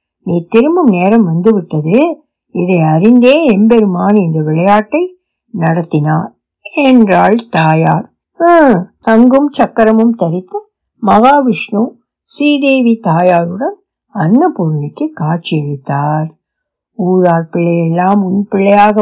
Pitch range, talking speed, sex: 175-260 Hz, 50 wpm, female